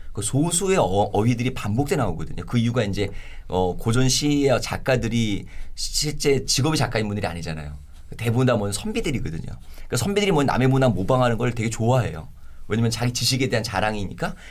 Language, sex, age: Korean, male, 40-59